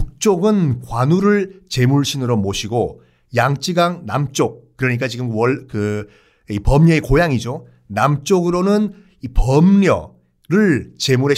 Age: 50-69